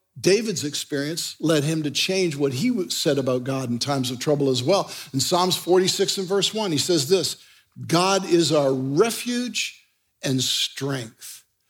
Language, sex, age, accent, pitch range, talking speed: English, male, 60-79, American, 140-210 Hz, 165 wpm